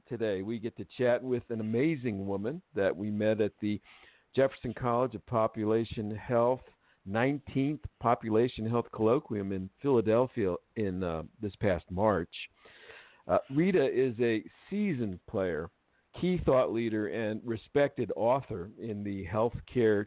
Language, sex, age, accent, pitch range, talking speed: English, male, 50-69, American, 105-125 Hz, 135 wpm